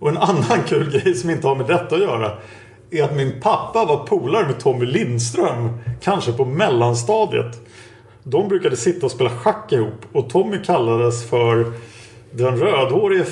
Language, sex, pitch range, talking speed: Swedish, male, 115-165 Hz, 165 wpm